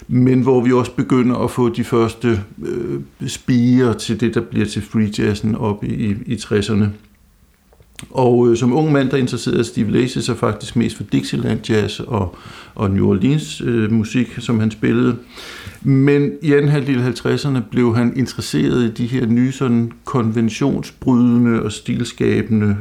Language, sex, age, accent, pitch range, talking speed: Danish, male, 60-79, native, 110-125 Hz, 160 wpm